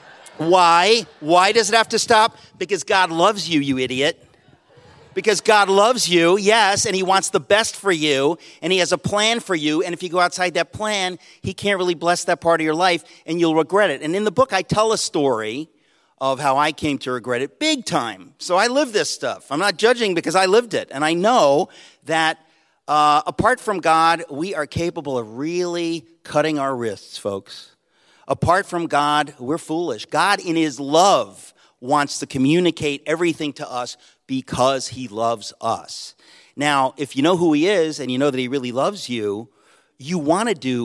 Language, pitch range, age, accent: English, 135-180 Hz, 50-69, American